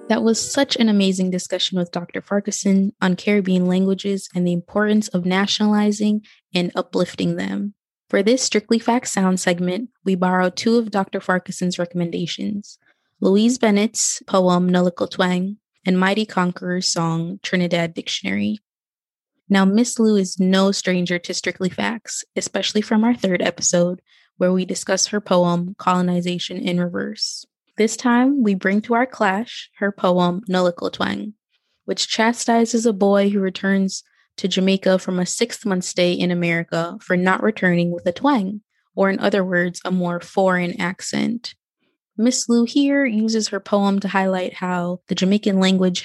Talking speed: 150 wpm